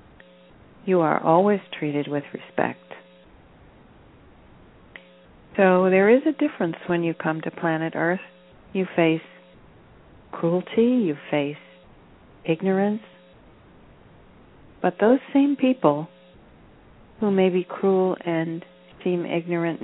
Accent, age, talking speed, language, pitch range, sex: American, 50-69, 105 wpm, English, 145-180 Hz, female